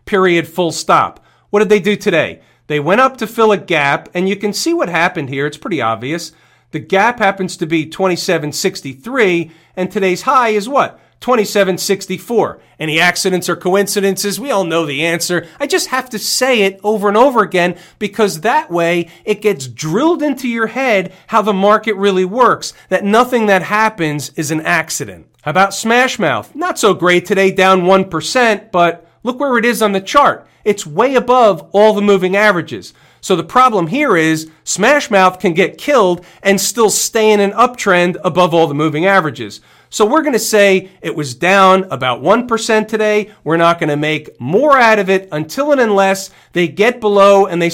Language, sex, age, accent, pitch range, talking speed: English, male, 40-59, American, 165-215 Hz, 190 wpm